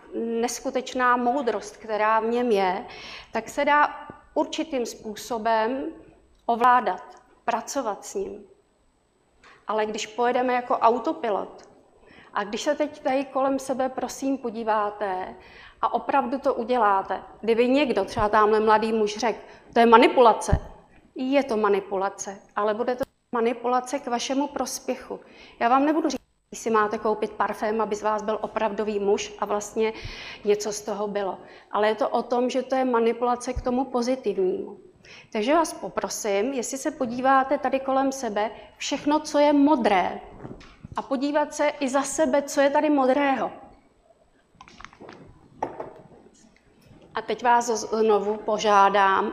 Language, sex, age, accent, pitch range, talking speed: Czech, female, 40-59, native, 215-270 Hz, 140 wpm